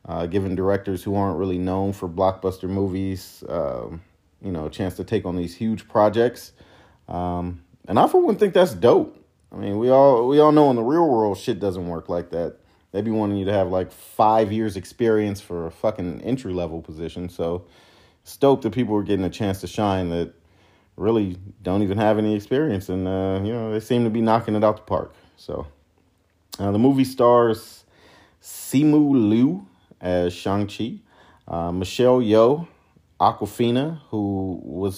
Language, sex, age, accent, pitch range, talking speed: English, male, 40-59, American, 90-115 Hz, 180 wpm